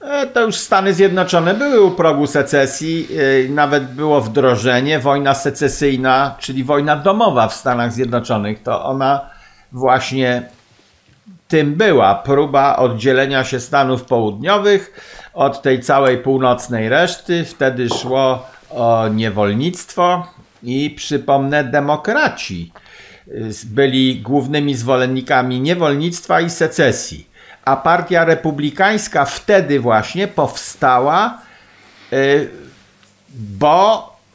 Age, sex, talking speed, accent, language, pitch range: 50-69, male, 95 wpm, native, Polish, 130-170 Hz